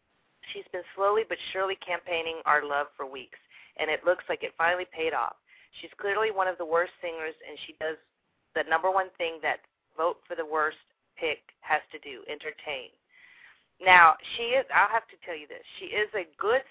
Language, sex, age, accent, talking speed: English, female, 40-59, American, 200 wpm